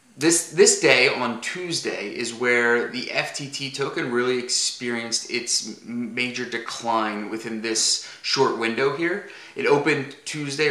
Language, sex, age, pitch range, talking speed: English, male, 20-39, 115-135 Hz, 130 wpm